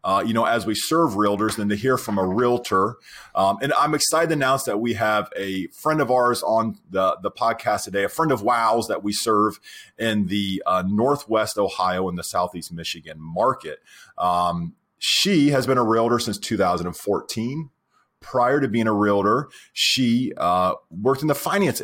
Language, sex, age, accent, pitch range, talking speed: English, male, 30-49, American, 100-135 Hz, 185 wpm